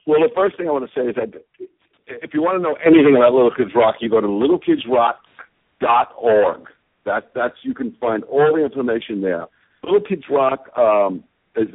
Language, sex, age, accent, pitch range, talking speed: English, male, 60-79, American, 115-160 Hz, 185 wpm